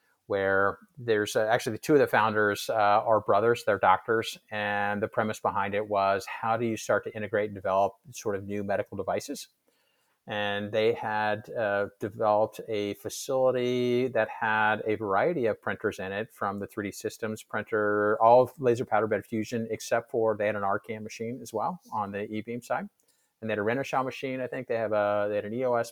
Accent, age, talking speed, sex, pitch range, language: American, 50-69, 205 wpm, male, 105-120 Hz, English